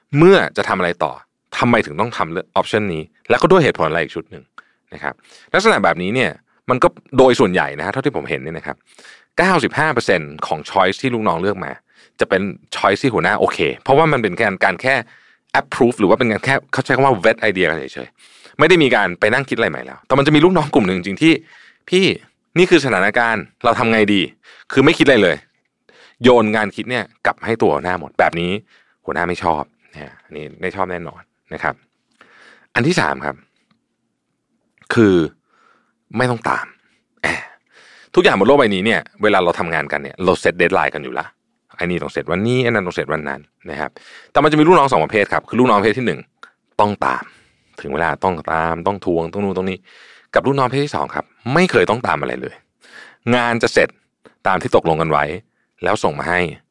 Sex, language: male, Thai